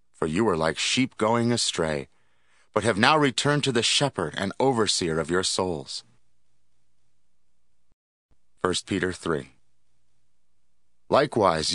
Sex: male